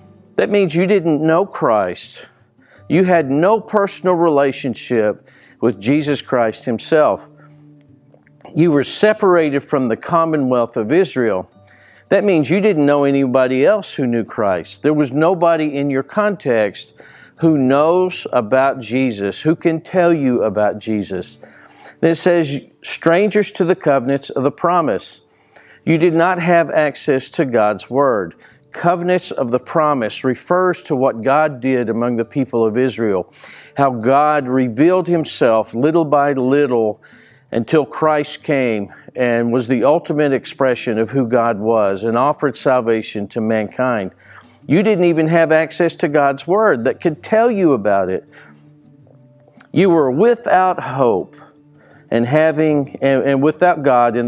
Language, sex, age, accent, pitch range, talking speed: English, male, 50-69, American, 120-165 Hz, 145 wpm